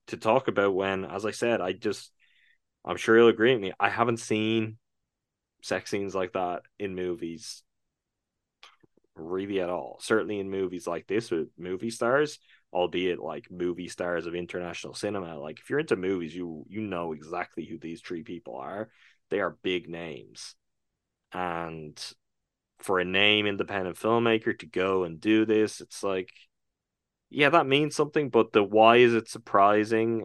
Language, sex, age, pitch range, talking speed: English, male, 10-29, 90-110 Hz, 165 wpm